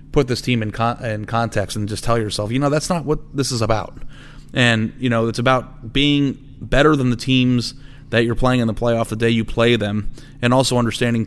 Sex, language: male, English